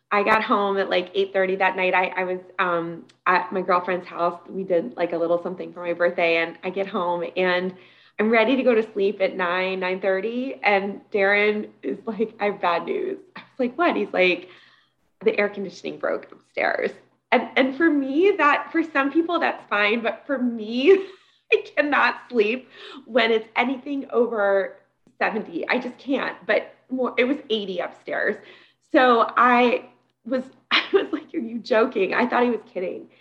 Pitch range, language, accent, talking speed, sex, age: 190-265 Hz, English, American, 185 wpm, female, 20-39